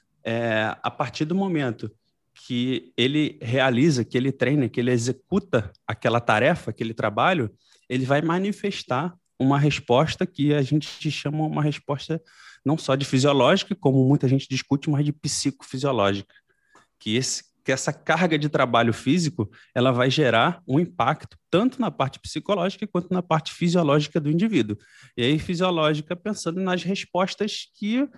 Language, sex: Portuguese, male